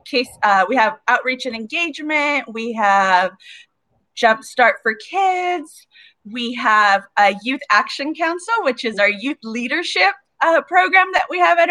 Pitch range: 220-285 Hz